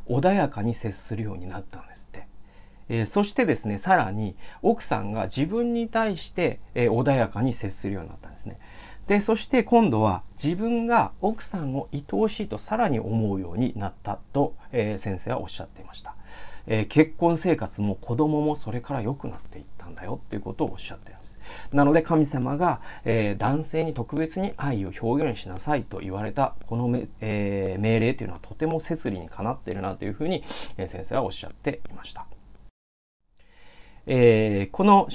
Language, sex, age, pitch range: Japanese, male, 40-59, 95-135 Hz